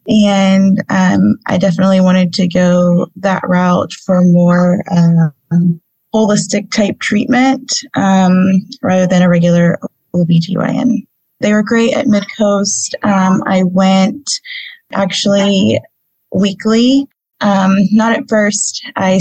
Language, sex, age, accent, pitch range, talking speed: English, female, 20-39, American, 175-200 Hz, 110 wpm